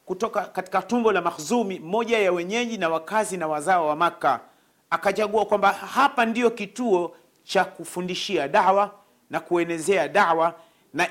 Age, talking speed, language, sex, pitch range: 40-59, 140 wpm, Swahili, male, 170-220 Hz